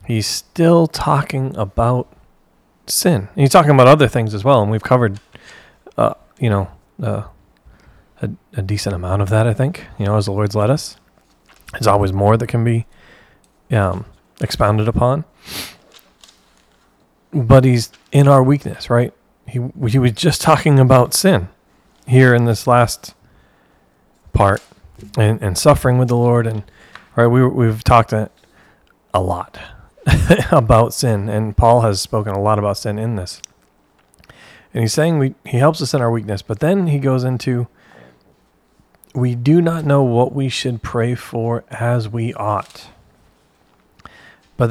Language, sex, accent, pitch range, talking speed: English, male, American, 110-135 Hz, 155 wpm